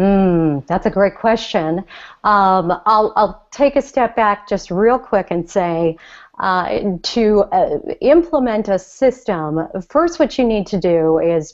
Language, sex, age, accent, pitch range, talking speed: English, female, 40-59, American, 185-235 Hz, 155 wpm